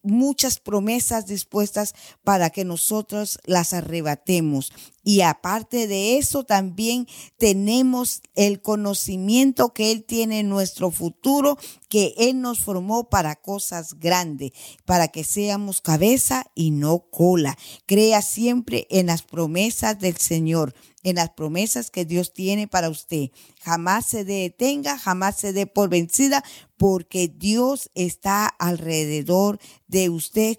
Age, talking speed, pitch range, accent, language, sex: 40-59, 130 wpm, 170-215 Hz, American, Spanish, female